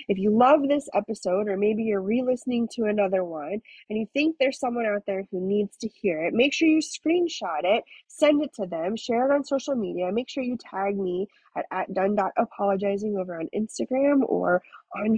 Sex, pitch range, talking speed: female, 195-275 Hz, 200 wpm